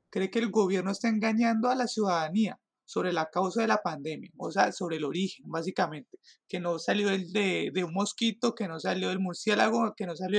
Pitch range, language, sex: 190-230 Hz, Spanish, male